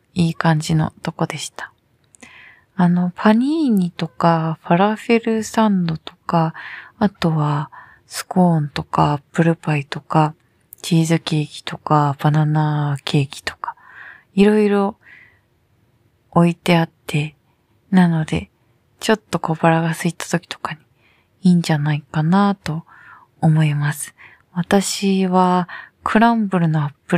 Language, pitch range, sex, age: Japanese, 150-200 Hz, female, 20-39